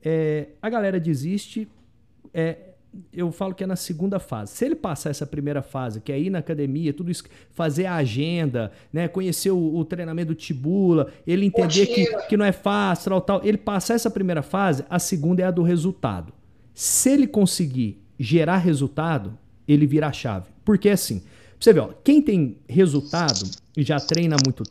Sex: male